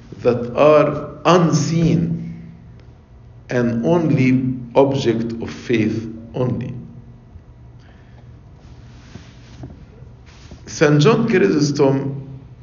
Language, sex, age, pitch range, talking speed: English, male, 50-69, 125-165 Hz, 55 wpm